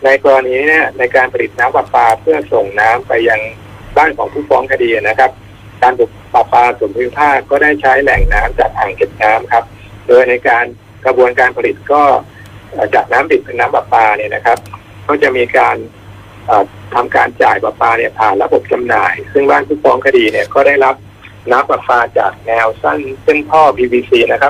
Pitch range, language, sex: 110-160 Hz, Thai, male